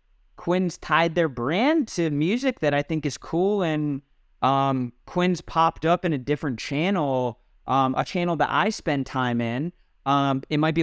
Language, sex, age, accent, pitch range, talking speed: English, male, 20-39, American, 125-150 Hz, 175 wpm